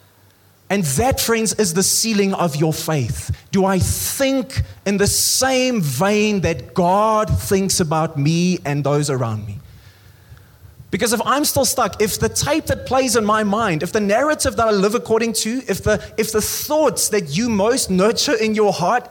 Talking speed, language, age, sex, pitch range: 180 wpm, English, 20-39, male, 175-250 Hz